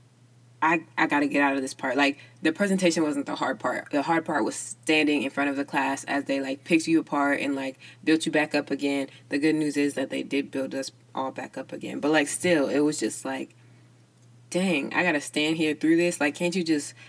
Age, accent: 20-39, American